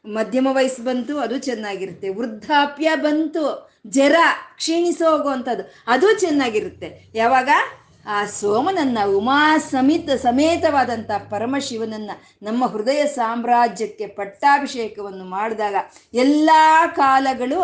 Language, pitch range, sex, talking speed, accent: Kannada, 215-300 Hz, female, 85 wpm, native